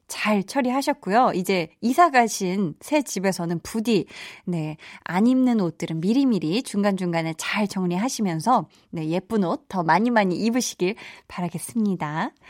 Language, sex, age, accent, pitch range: Korean, female, 20-39, native, 185-275 Hz